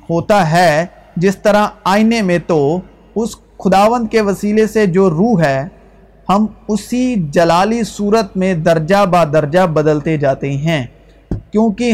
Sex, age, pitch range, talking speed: male, 50-69, 165-205 Hz, 135 wpm